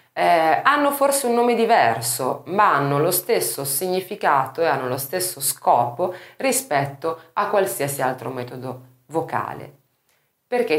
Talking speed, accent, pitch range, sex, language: 130 wpm, native, 135-210 Hz, female, Italian